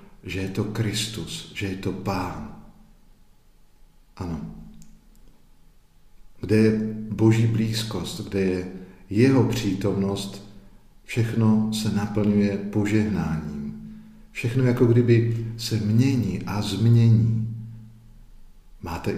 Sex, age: male, 50-69